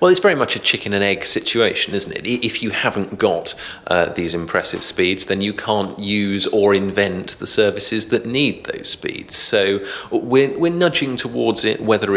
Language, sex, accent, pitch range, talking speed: English, male, British, 85-110 Hz, 190 wpm